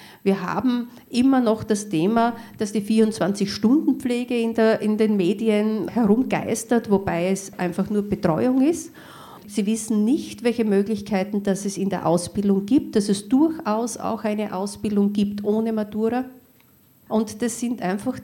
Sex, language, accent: female, German, Austrian